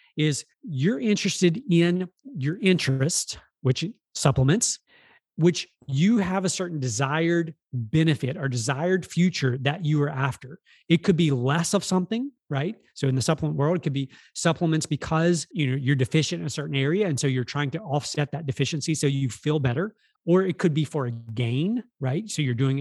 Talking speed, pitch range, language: 190 wpm, 135-175 Hz, English